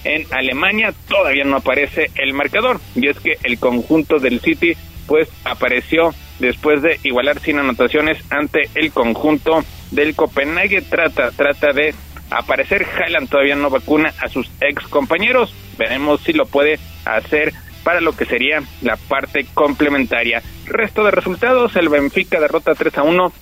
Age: 40-59